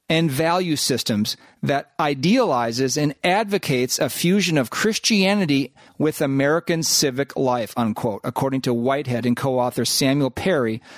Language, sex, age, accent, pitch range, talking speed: English, male, 40-59, American, 130-180 Hz, 125 wpm